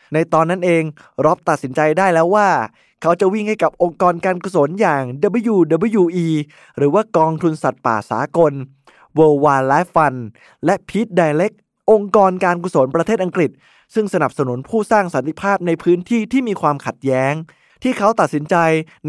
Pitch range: 155-210 Hz